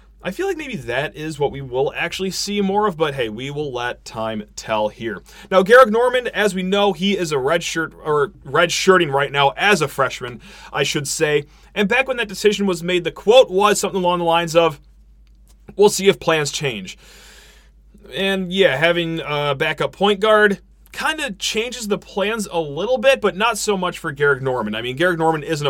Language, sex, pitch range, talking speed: English, male, 135-190 Hz, 210 wpm